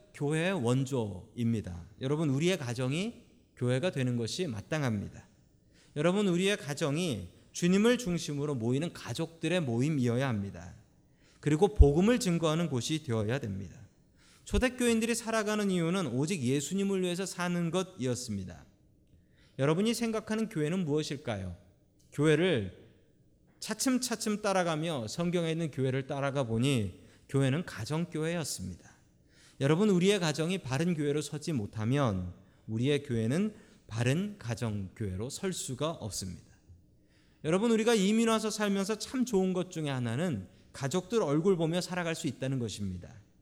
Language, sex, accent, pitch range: Korean, male, native, 120-185 Hz